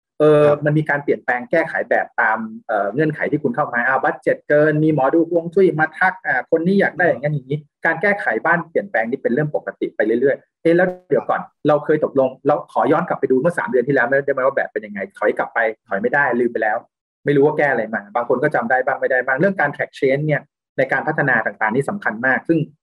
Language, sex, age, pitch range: Thai, male, 30-49, 130-180 Hz